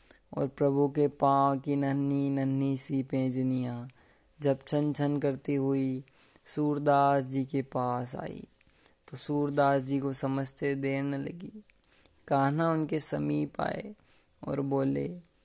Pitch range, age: 135-155 Hz, 20-39